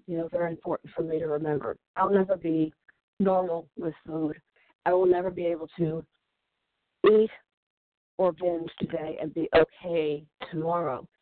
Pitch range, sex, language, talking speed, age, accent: 150-185 Hz, female, English, 150 wpm, 50-69, American